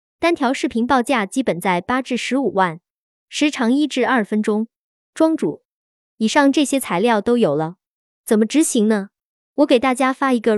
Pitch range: 205-270 Hz